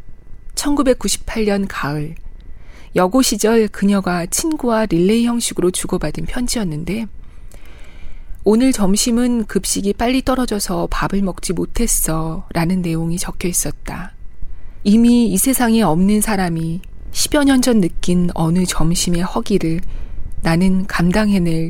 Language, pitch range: Korean, 160-220 Hz